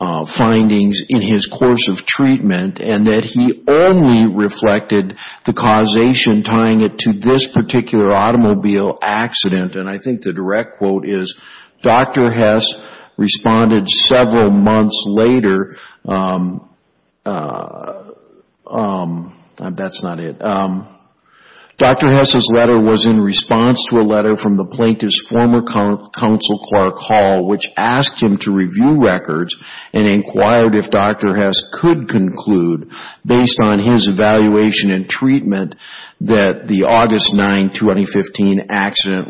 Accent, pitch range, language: American, 100-115 Hz, English